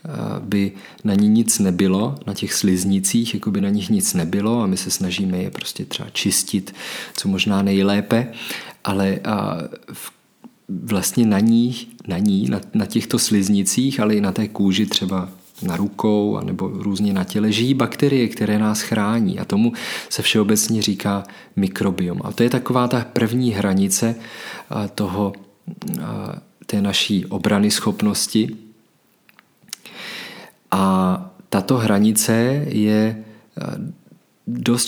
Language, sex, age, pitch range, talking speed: Czech, male, 40-59, 100-115 Hz, 130 wpm